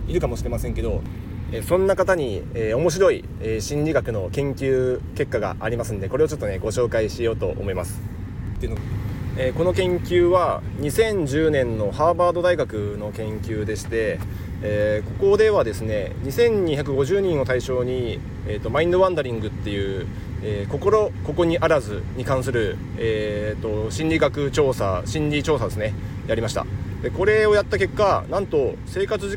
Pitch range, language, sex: 105-150 Hz, Japanese, male